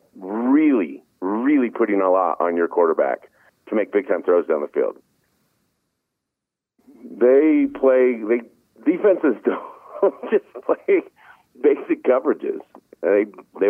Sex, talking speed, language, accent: male, 120 wpm, English, American